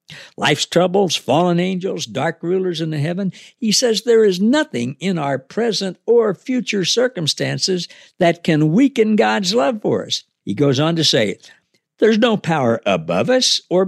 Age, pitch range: 60-79, 140-210 Hz